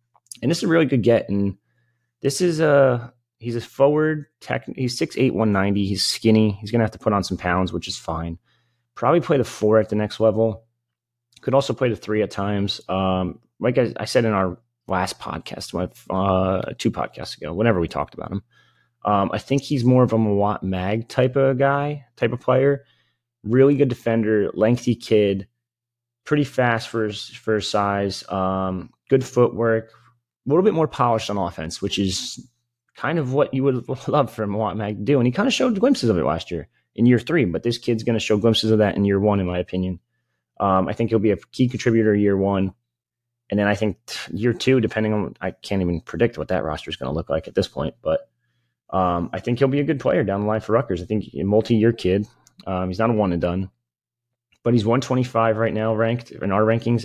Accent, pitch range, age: American, 100-120 Hz, 30-49